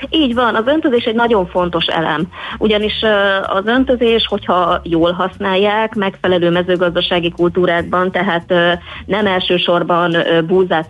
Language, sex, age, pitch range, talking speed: Hungarian, female, 30-49, 170-195 Hz, 115 wpm